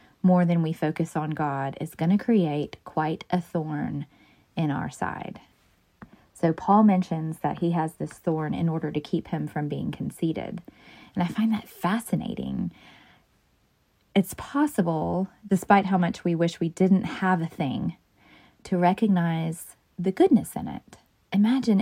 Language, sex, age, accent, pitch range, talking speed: English, female, 20-39, American, 170-195 Hz, 155 wpm